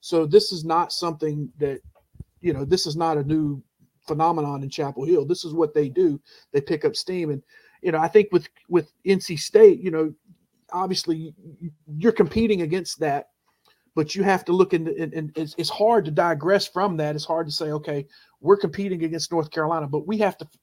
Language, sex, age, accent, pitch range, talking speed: English, male, 40-59, American, 150-185 Hz, 210 wpm